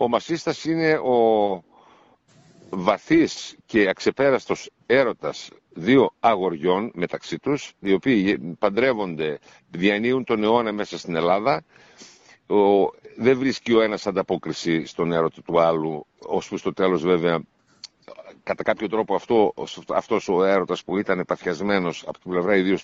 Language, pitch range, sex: Greek, 95-125 Hz, male